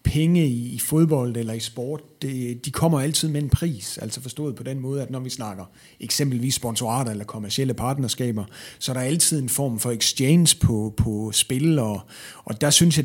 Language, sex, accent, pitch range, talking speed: Danish, male, native, 110-140 Hz, 200 wpm